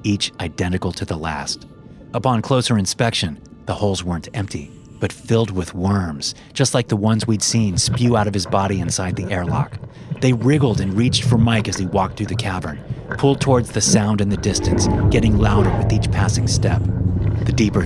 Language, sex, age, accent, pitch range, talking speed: English, male, 30-49, American, 95-120 Hz, 190 wpm